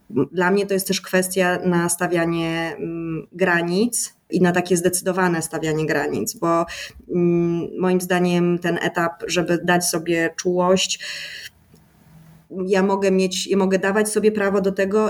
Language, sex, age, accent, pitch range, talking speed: Polish, female, 20-39, native, 170-195 Hz, 135 wpm